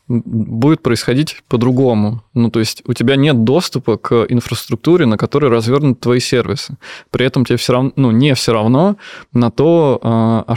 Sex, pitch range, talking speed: male, 115-135 Hz, 165 wpm